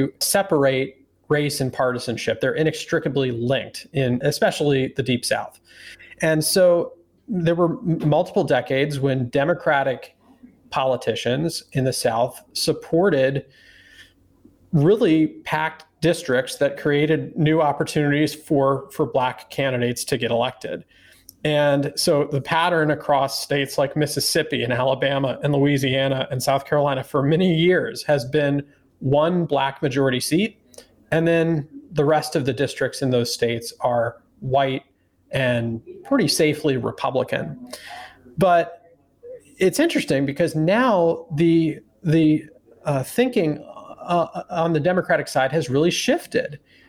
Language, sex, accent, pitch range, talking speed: English, male, American, 135-165 Hz, 125 wpm